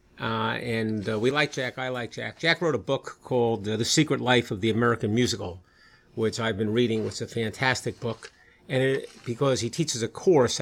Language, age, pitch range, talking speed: English, 50-69, 115-140 Hz, 210 wpm